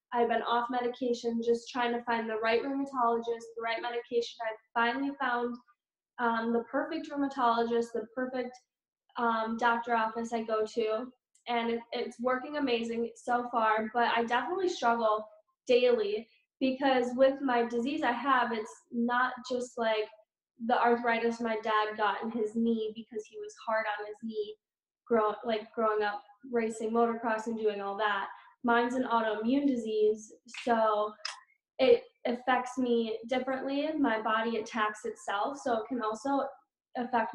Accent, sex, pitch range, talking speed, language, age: American, female, 225-260 Hz, 155 wpm, English, 10-29